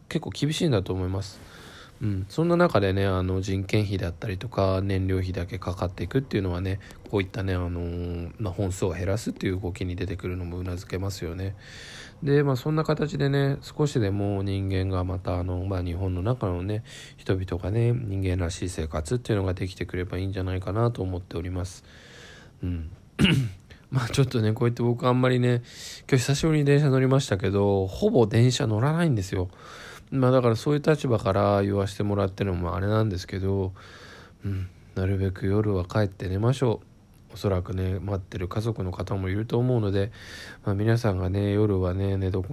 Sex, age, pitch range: male, 20-39, 95-120 Hz